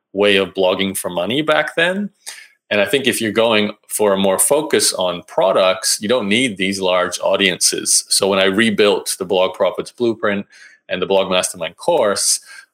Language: English